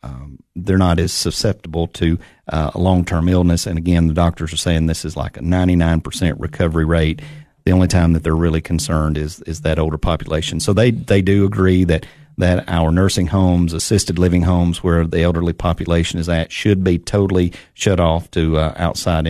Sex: male